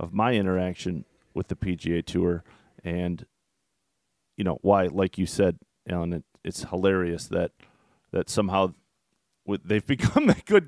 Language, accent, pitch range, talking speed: English, American, 95-110 Hz, 145 wpm